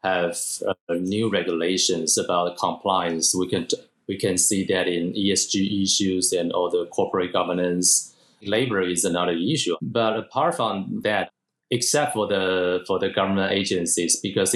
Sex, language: male, English